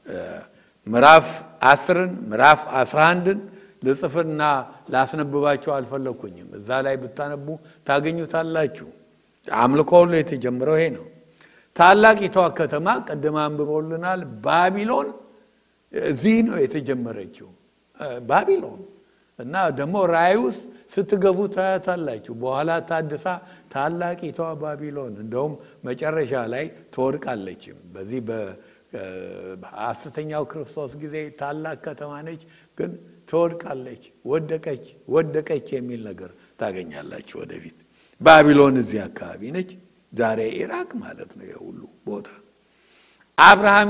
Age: 60-79